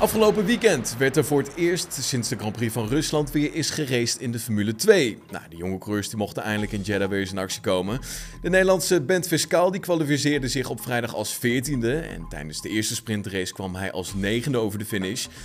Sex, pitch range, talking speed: male, 100-145 Hz, 220 wpm